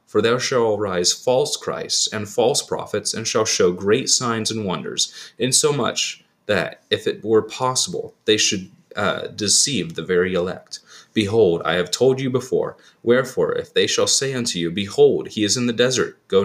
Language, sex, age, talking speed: English, male, 30-49, 180 wpm